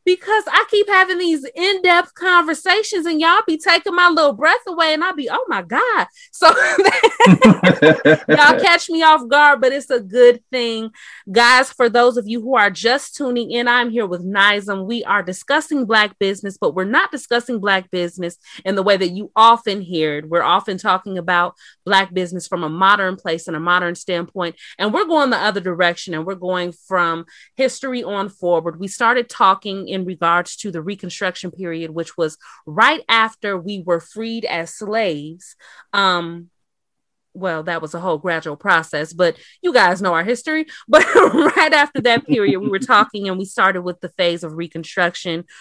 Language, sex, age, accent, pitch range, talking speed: English, female, 20-39, American, 180-250 Hz, 185 wpm